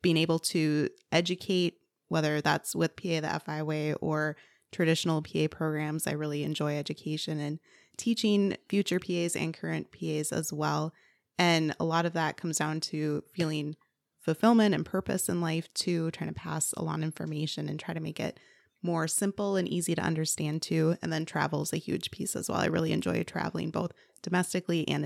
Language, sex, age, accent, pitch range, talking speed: English, female, 20-39, American, 155-180 Hz, 185 wpm